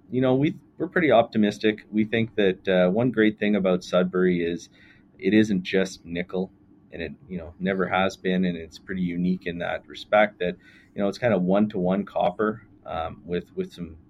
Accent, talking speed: American, 195 wpm